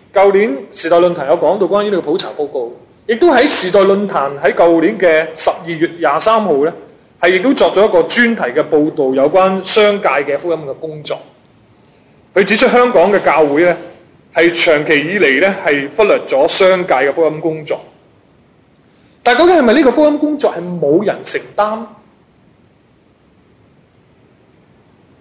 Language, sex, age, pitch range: Chinese, male, 30-49, 160-230 Hz